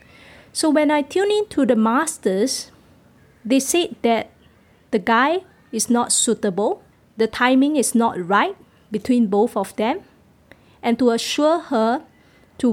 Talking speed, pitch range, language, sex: 140 wpm, 225-285 Hz, English, female